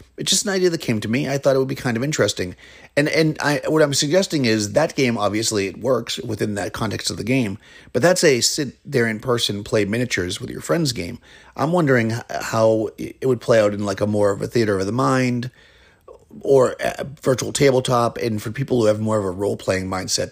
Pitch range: 100-135 Hz